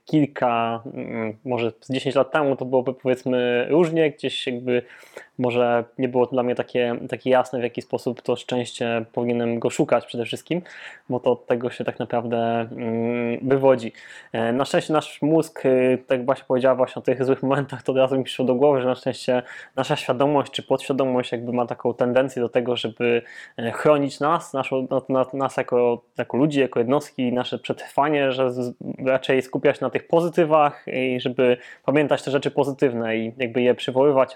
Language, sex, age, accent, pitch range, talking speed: Polish, male, 20-39, native, 125-145 Hz, 175 wpm